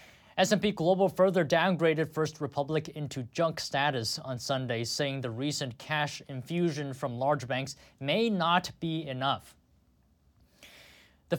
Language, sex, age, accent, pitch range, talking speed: English, male, 20-39, American, 130-165 Hz, 125 wpm